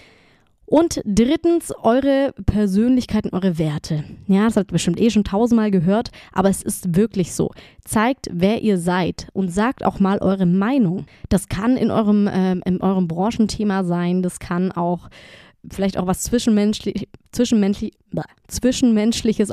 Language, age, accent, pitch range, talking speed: German, 20-39, German, 185-220 Hz, 145 wpm